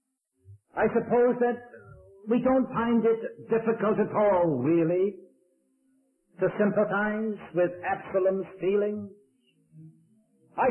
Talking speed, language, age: 95 wpm, English, 60-79